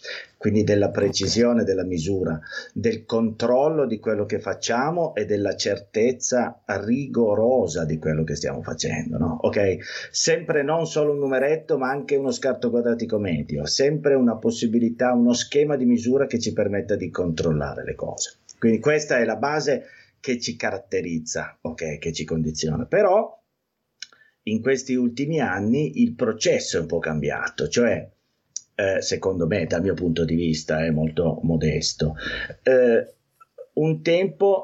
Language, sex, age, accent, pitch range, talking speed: Italian, male, 30-49, native, 105-160 Hz, 145 wpm